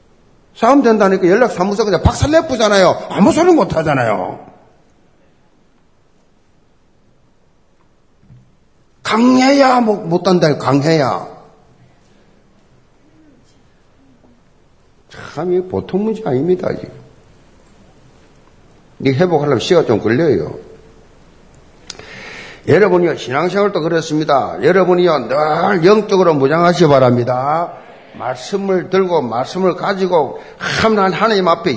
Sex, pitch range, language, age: male, 175-215 Hz, Korean, 50-69